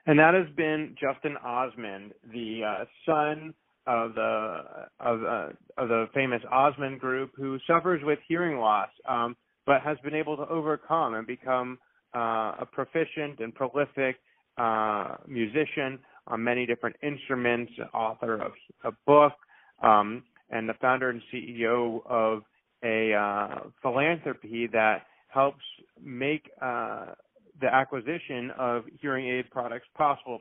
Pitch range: 120-145 Hz